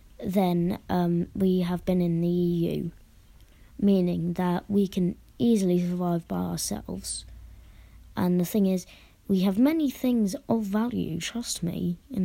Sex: female